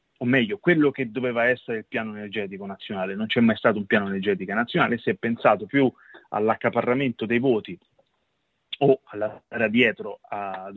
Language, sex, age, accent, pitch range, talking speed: Italian, male, 30-49, native, 110-130 Hz, 160 wpm